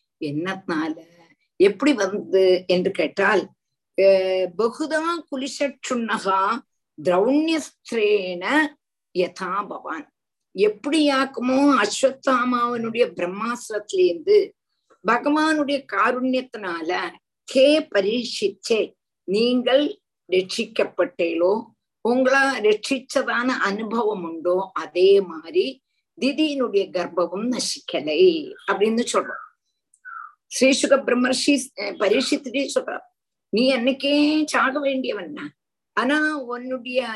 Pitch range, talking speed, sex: 195-285 Hz, 65 wpm, female